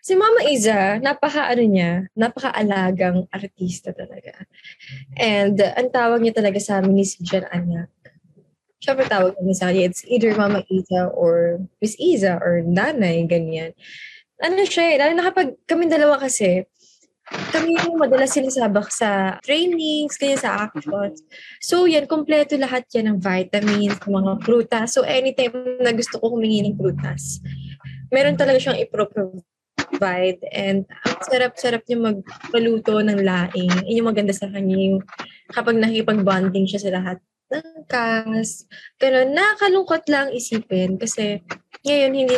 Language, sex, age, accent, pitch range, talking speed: English, female, 20-39, Filipino, 195-305 Hz, 140 wpm